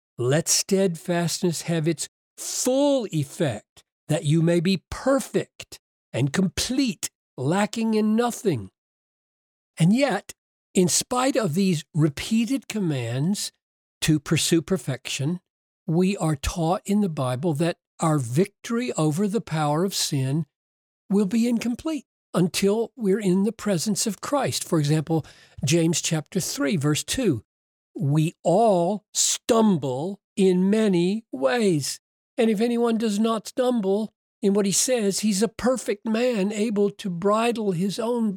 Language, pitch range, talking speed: English, 160-225 Hz, 130 wpm